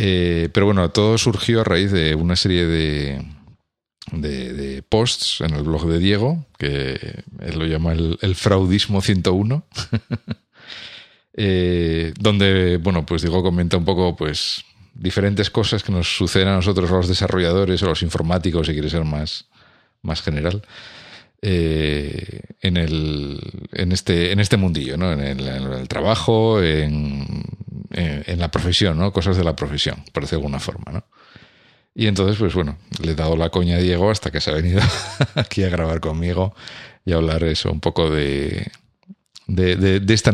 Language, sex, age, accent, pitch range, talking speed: Spanish, male, 50-69, Spanish, 80-100 Hz, 165 wpm